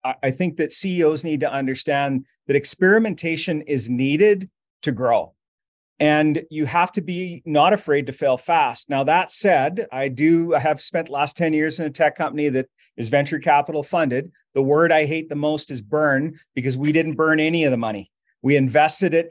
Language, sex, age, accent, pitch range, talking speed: English, male, 40-59, American, 145-180 Hz, 195 wpm